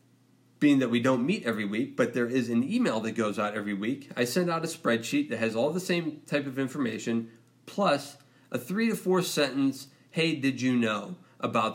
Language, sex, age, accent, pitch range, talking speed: English, male, 40-59, American, 110-130 Hz, 210 wpm